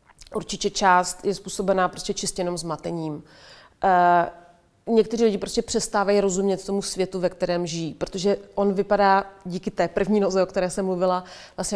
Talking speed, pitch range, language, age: 160 wpm, 175-200 Hz, Czech, 30-49